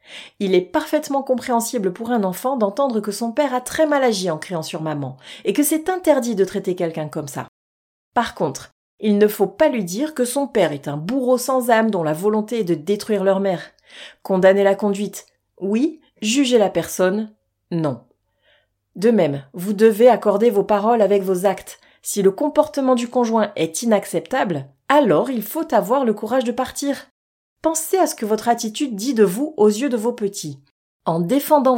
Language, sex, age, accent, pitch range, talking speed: French, female, 30-49, French, 195-265 Hz, 190 wpm